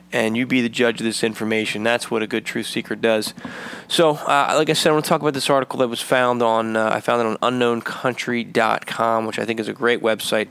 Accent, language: American, English